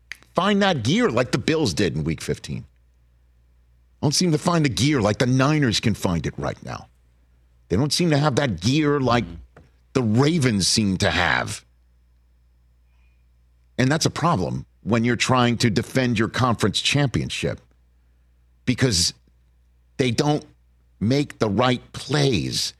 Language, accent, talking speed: English, American, 145 wpm